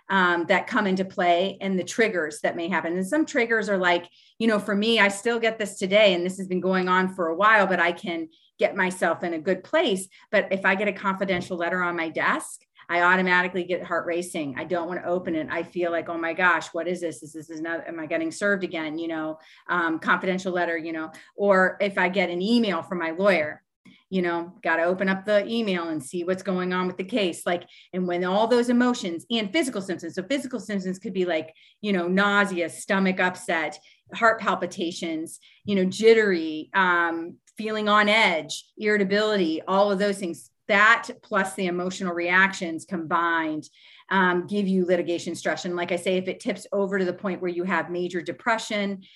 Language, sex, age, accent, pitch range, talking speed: English, female, 30-49, American, 170-200 Hz, 215 wpm